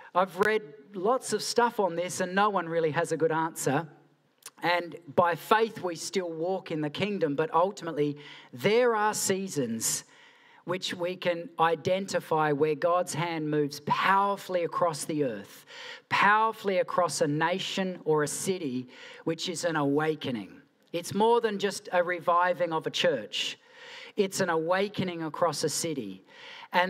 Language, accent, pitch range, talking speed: English, Australian, 160-215 Hz, 150 wpm